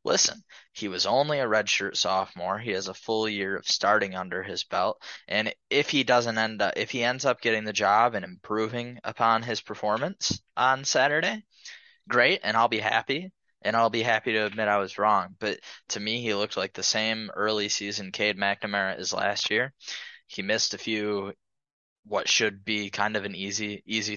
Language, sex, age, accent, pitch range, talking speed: English, male, 10-29, American, 105-125 Hz, 195 wpm